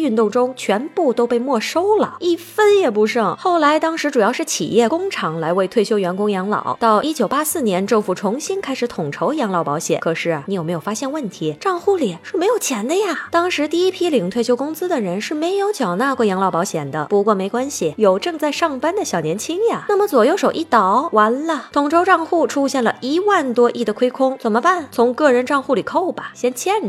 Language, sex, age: Chinese, female, 20-39